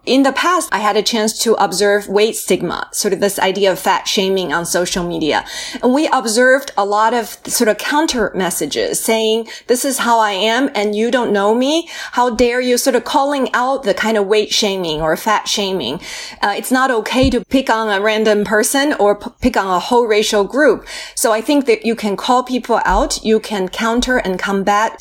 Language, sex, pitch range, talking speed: English, female, 200-240 Hz, 215 wpm